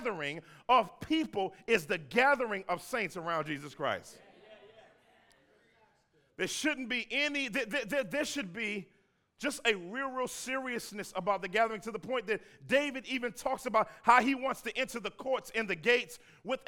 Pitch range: 185-240 Hz